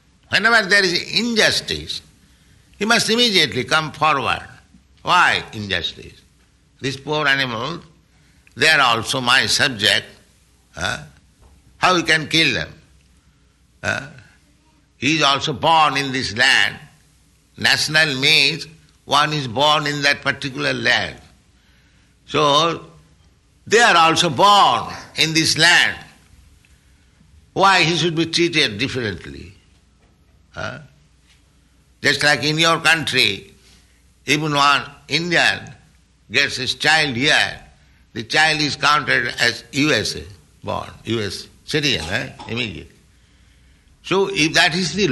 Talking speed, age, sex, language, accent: 110 wpm, 60-79, male, English, Indian